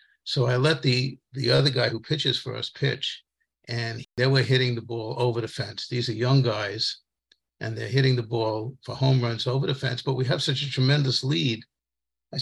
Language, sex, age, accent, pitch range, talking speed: English, male, 50-69, American, 120-140 Hz, 215 wpm